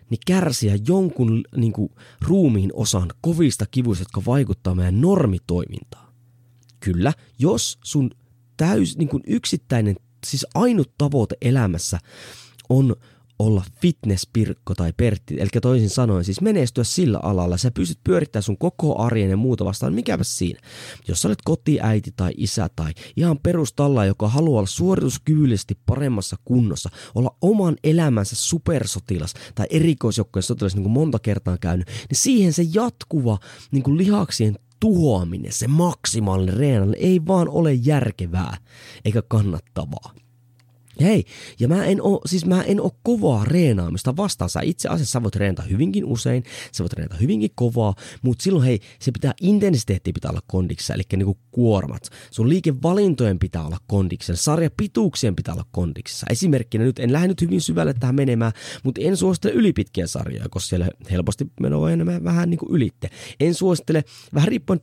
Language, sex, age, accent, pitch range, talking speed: Finnish, male, 20-39, native, 100-150 Hz, 150 wpm